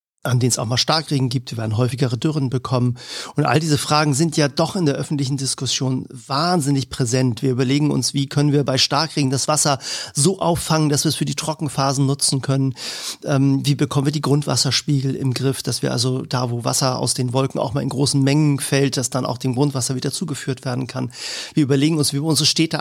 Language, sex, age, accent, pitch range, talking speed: German, male, 40-59, German, 130-150 Hz, 220 wpm